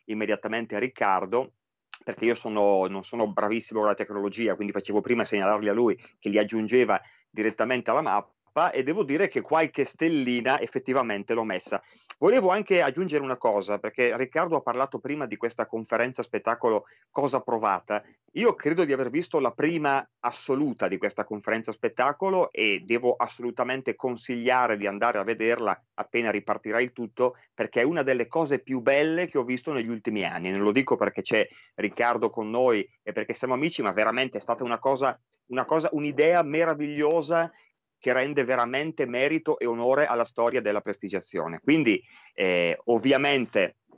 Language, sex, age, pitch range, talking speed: Italian, male, 30-49, 110-135 Hz, 165 wpm